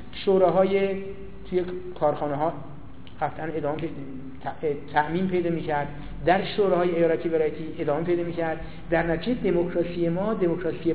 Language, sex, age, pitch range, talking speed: Persian, male, 50-69, 150-185 Hz, 115 wpm